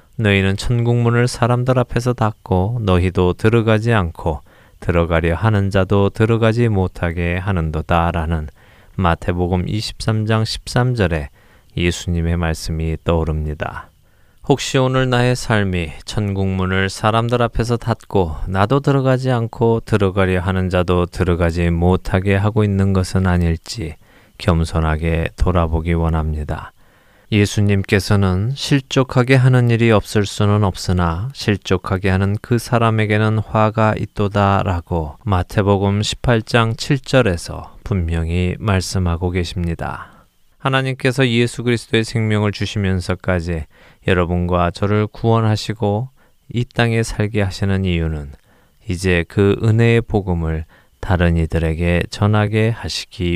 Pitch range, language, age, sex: 85-115 Hz, Korean, 20-39, male